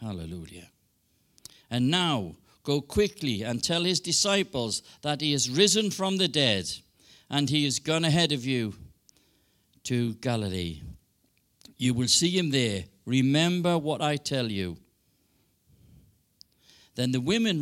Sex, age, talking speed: male, 60-79, 130 wpm